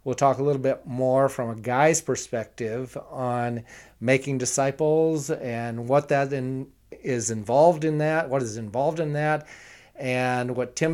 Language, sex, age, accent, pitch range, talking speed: English, male, 40-59, American, 125-150 Hz, 160 wpm